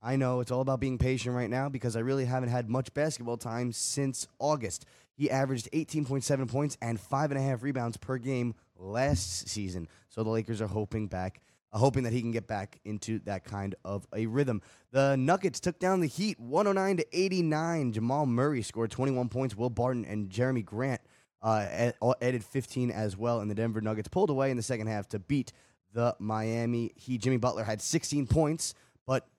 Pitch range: 110-140 Hz